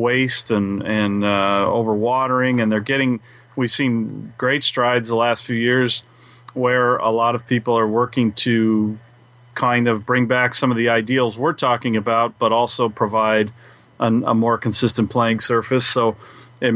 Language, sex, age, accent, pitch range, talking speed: English, male, 30-49, American, 110-125 Hz, 165 wpm